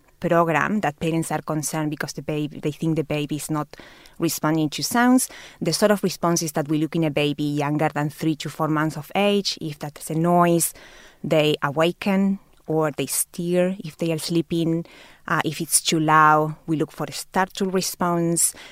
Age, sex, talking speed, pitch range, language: 20-39, female, 190 wpm, 155-180 Hz, English